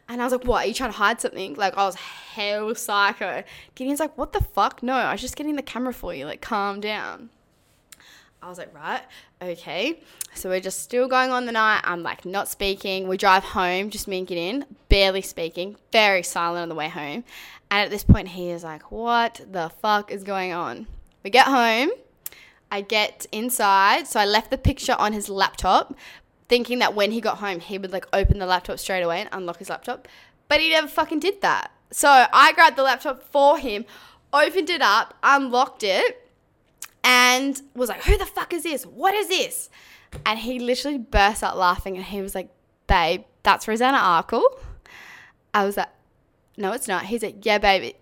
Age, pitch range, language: 10-29, 195-260 Hz, English